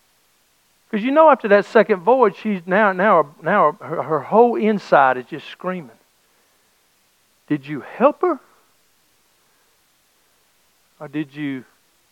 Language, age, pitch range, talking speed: English, 60-79, 155-235 Hz, 125 wpm